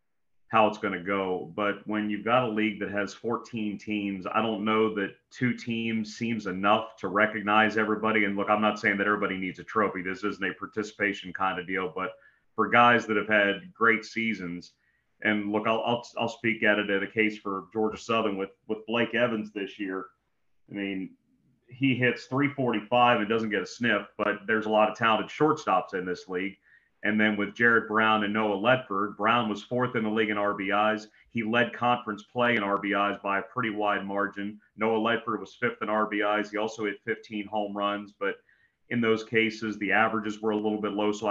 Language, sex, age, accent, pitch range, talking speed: English, male, 30-49, American, 100-110 Hz, 205 wpm